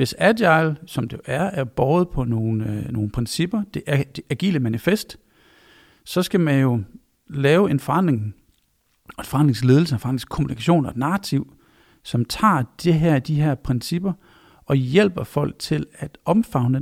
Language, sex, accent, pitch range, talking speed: Danish, male, native, 130-175 Hz, 155 wpm